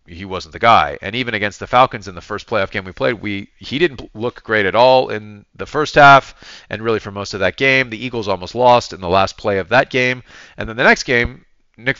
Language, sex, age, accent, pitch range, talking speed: English, male, 40-59, American, 95-125 Hz, 255 wpm